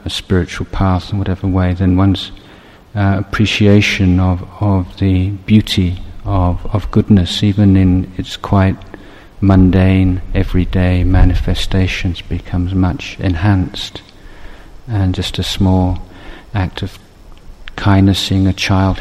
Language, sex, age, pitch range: Thai, male, 50-69, 90-100 Hz